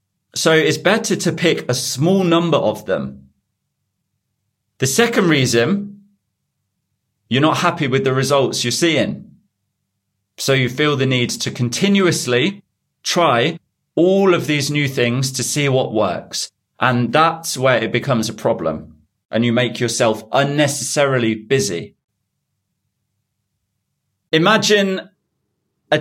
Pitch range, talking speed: 120-160 Hz, 120 wpm